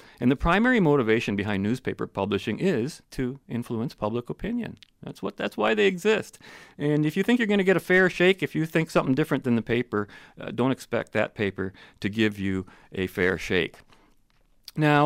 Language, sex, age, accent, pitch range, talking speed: English, male, 40-59, American, 105-150 Hz, 190 wpm